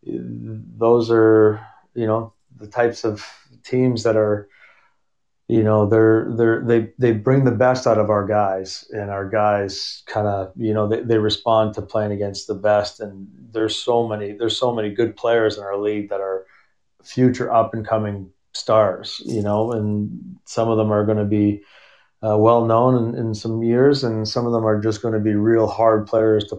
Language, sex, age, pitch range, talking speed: English, male, 30-49, 105-115 Hz, 195 wpm